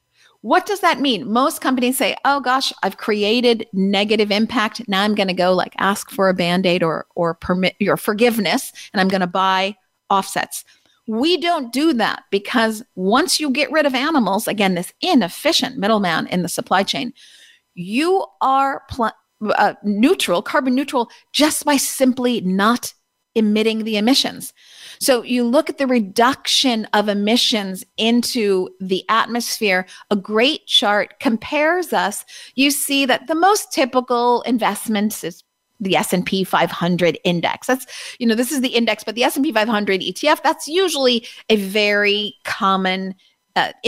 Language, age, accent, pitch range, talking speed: English, 40-59, American, 205-275 Hz, 150 wpm